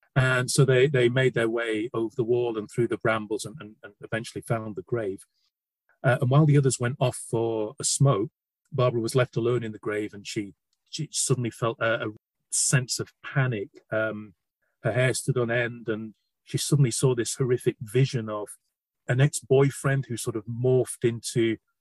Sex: male